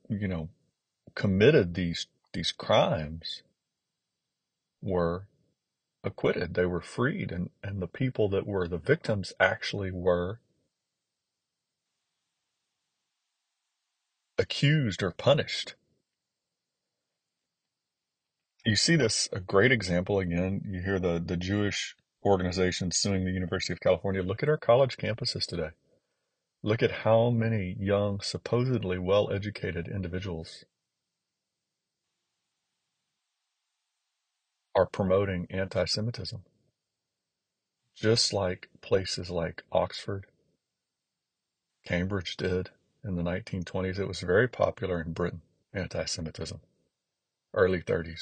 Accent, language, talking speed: American, English, 100 wpm